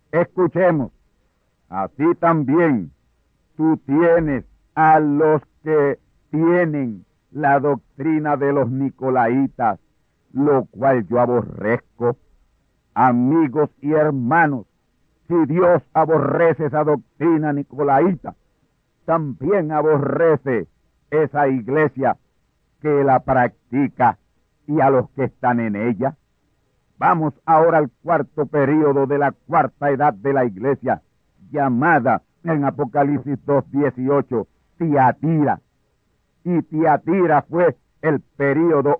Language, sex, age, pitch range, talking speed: Spanish, male, 60-79, 130-155 Hz, 95 wpm